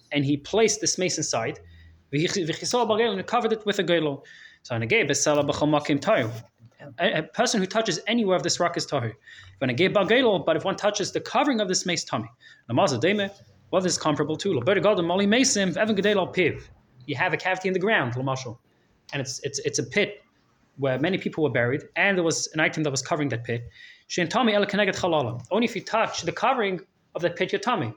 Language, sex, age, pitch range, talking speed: English, male, 20-39, 145-200 Hz, 165 wpm